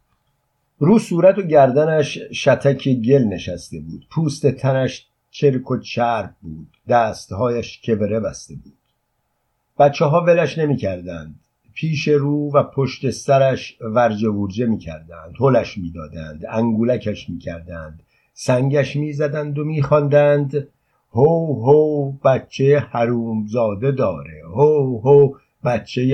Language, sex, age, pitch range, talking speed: Persian, male, 60-79, 115-145 Hz, 115 wpm